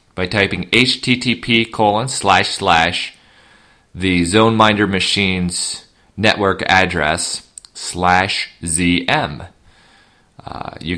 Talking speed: 80 wpm